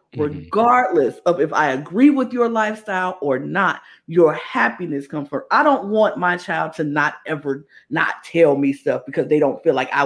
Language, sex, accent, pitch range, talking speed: English, female, American, 150-200 Hz, 190 wpm